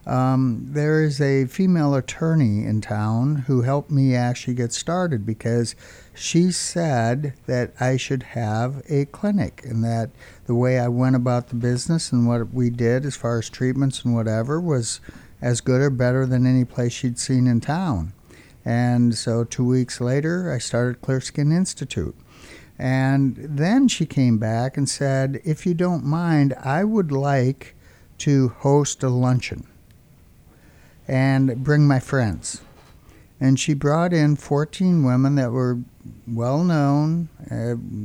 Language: English